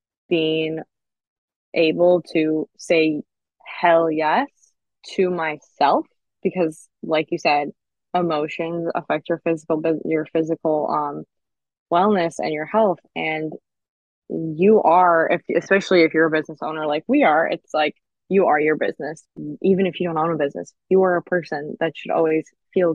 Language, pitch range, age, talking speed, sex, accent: English, 155-180 Hz, 20-39, 150 wpm, female, American